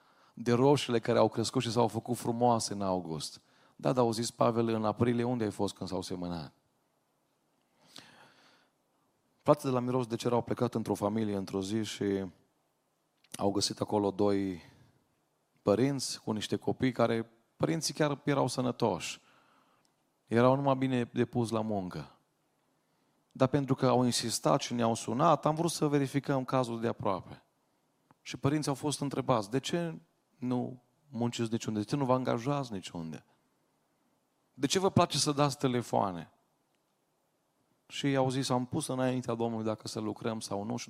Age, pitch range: 40-59, 110-140 Hz